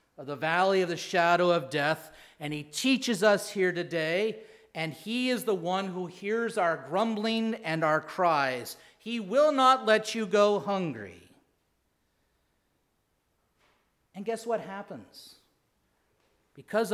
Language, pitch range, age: English, 155-225 Hz, 40-59